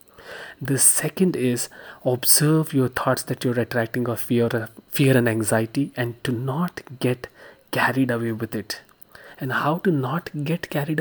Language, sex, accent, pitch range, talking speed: English, male, Indian, 120-155 Hz, 155 wpm